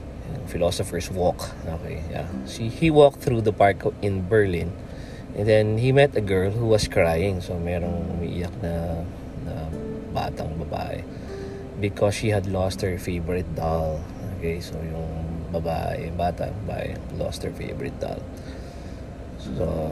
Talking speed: 140 wpm